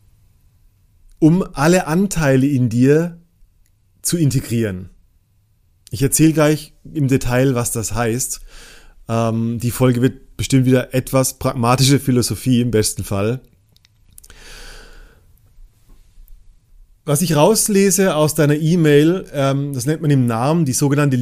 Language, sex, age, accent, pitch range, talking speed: German, male, 30-49, German, 105-155 Hz, 115 wpm